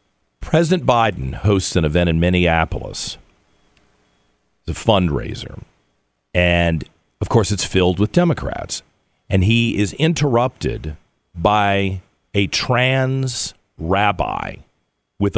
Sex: male